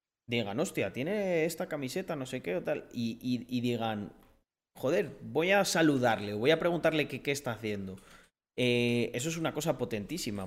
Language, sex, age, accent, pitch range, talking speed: Spanish, male, 30-49, Spanish, 110-145 Hz, 180 wpm